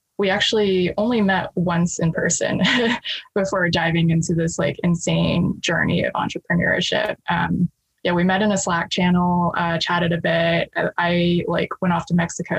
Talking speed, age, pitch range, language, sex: 165 wpm, 20-39, 170-195 Hz, English, female